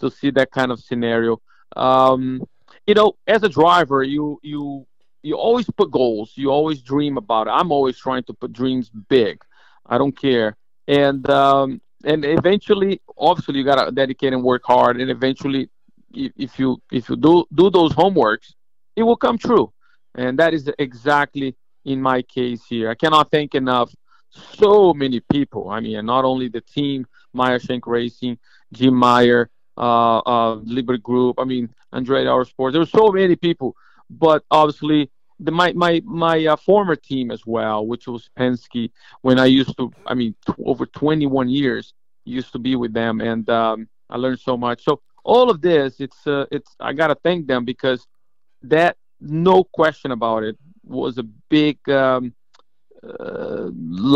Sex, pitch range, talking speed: male, 125-155 Hz, 175 wpm